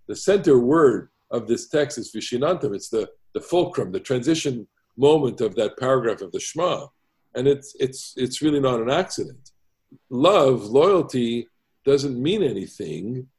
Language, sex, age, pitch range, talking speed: English, male, 50-69, 125-175 Hz, 150 wpm